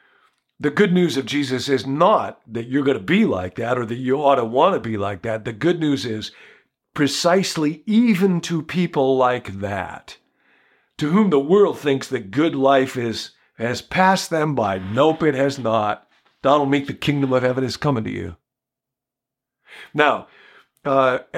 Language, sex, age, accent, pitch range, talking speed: English, male, 50-69, American, 110-145 Hz, 180 wpm